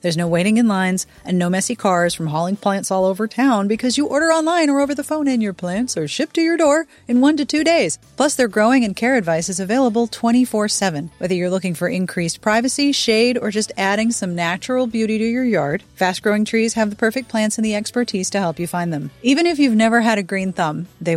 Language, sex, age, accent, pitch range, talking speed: English, female, 30-49, American, 175-245 Hz, 245 wpm